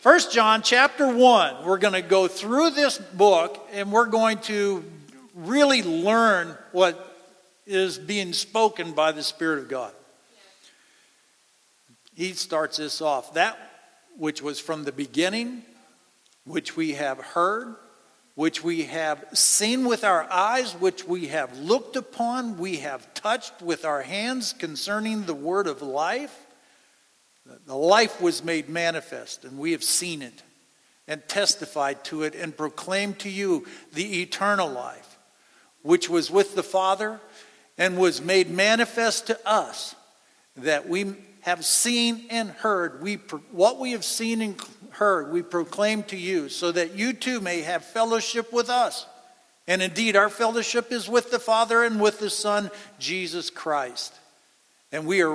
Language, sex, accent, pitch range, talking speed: English, male, American, 175-240 Hz, 150 wpm